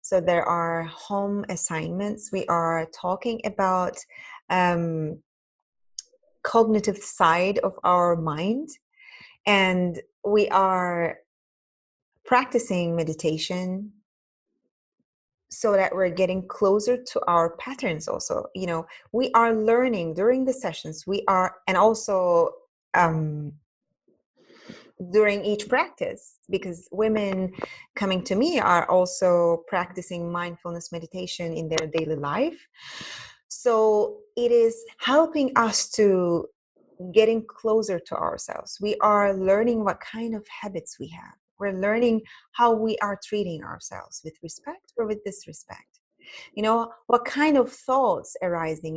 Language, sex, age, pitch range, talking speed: English, female, 20-39, 175-230 Hz, 120 wpm